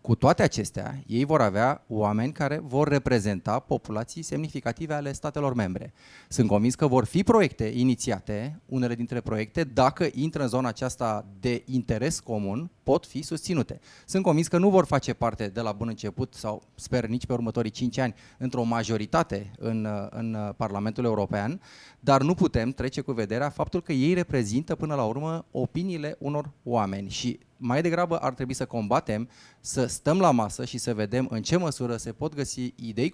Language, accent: Romanian, native